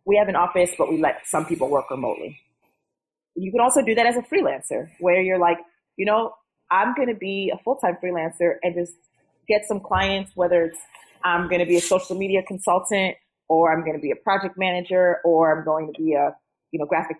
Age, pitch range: 30-49, 155-185 Hz